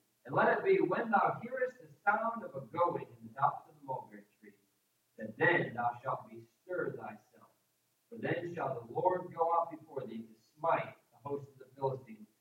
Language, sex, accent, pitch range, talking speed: English, male, American, 145-205 Hz, 195 wpm